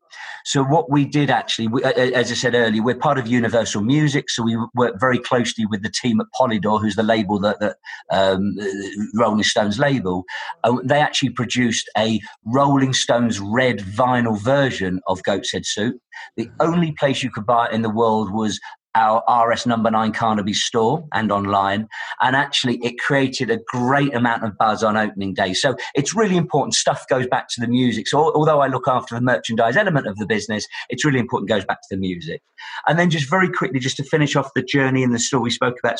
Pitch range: 110-135 Hz